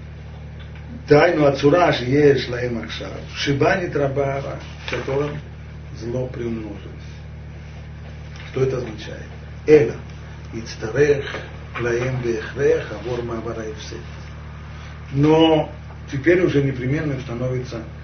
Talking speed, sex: 80 wpm, male